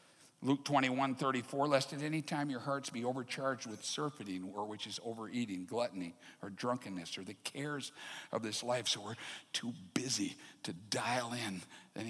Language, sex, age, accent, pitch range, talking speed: English, male, 60-79, American, 110-145 Hz, 170 wpm